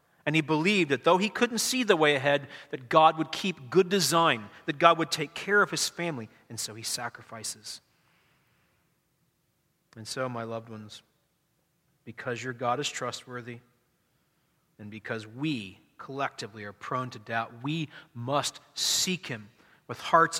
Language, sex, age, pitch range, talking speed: English, male, 40-59, 125-170 Hz, 155 wpm